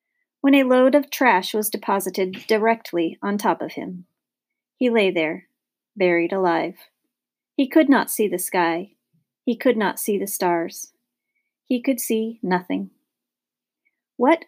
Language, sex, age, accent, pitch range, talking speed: English, female, 40-59, American, 190-255 Hz, 140 wpm